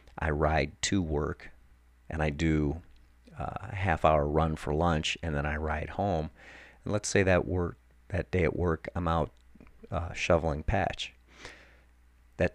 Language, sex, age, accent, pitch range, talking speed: English, male, 40-59, American, 65-85 Hz, 160 wpm